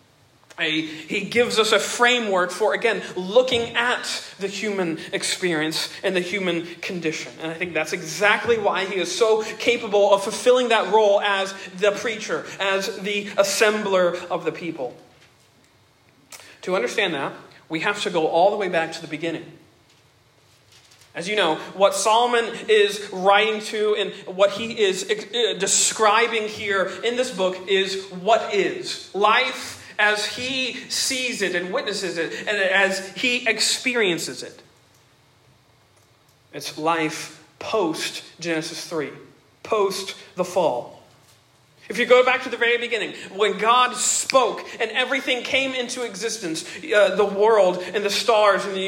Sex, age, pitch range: male, 40-59, 165-220 Hz